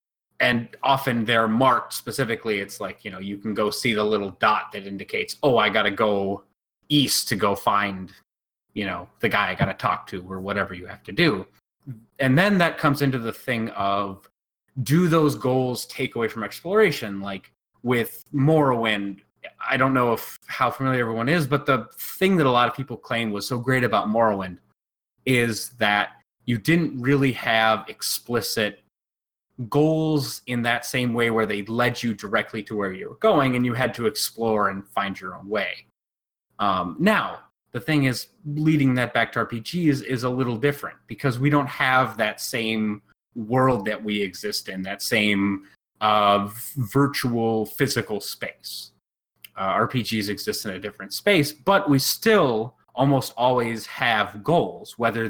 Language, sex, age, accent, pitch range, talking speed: English, male, 30-49, American, 105-135 Hz, 175 wpm